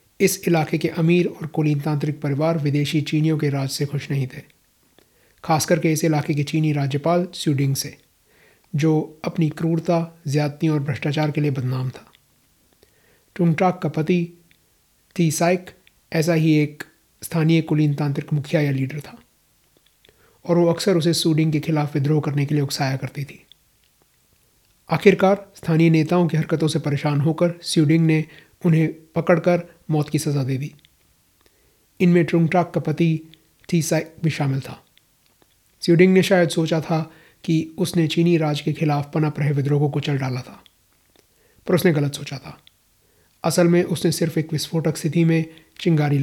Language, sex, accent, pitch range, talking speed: Hindi, male, native, 145-170 Hz, 155 wpm